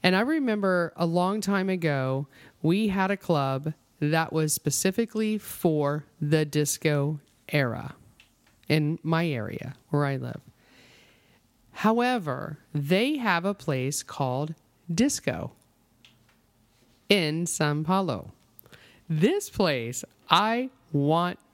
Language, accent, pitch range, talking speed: English, American, 140-190 Hz, 105 wpm